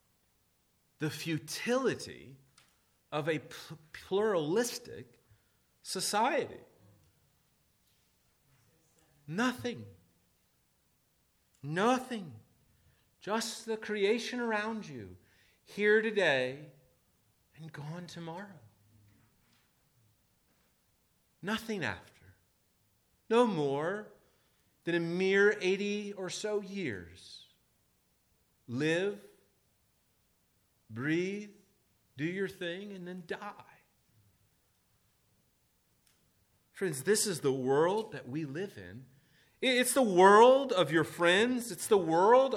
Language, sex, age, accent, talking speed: English, male, 40-59, American, 80 wpm